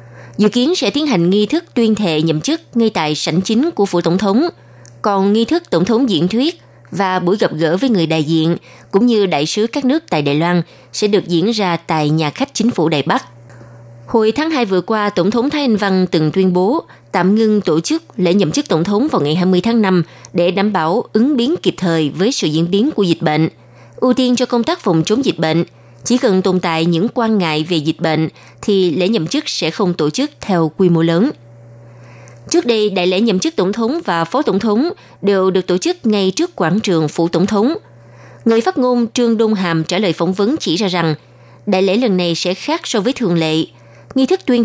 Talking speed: 235 wpm